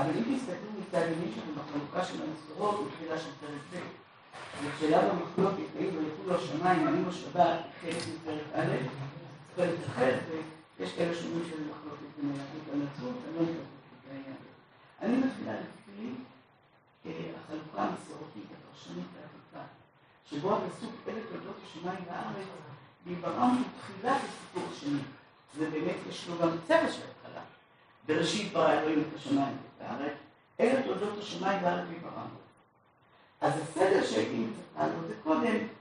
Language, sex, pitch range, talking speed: Hebrew, female, 150-195 Hz, 125 wpm